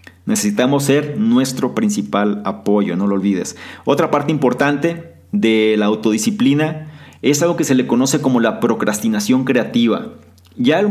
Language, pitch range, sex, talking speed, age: Spanish, 115-155 Hz, male, 140 wpm, 40-59